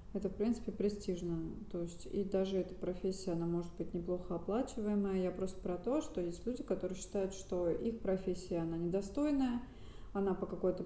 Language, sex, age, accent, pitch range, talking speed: Russian, female, 30-49, native, 185-220 Hz, 175 wpm